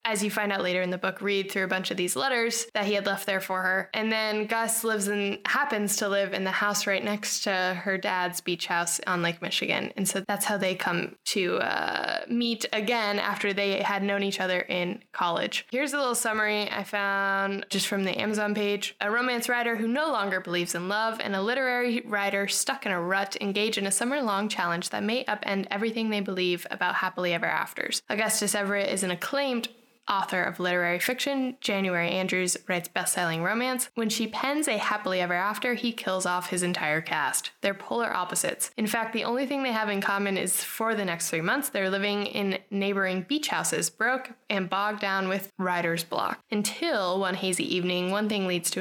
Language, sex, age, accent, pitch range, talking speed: English, female, 10-29, American, 185-230 Hz, 210 wpm